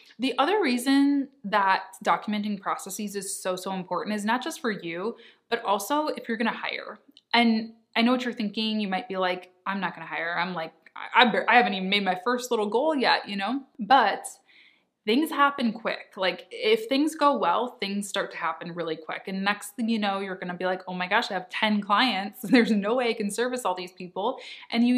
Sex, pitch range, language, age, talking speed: female, 190-240 Hz, English, 20-39, 220 wpm